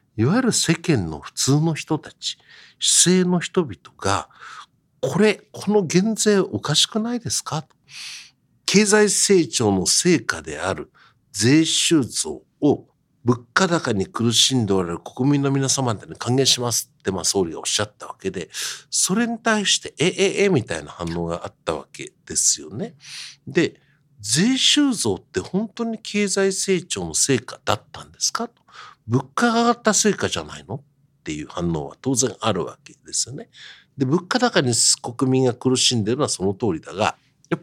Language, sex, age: Japanese, male, 60-79